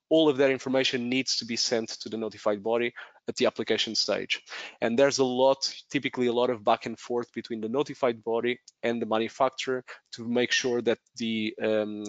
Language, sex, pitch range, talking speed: English, male, 115-135 Hz, 200 wpm